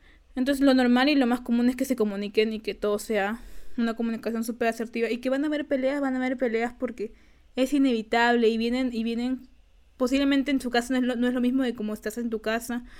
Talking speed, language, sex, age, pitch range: 245 wpm, Spanish, female, 20-39, 230-275 Hz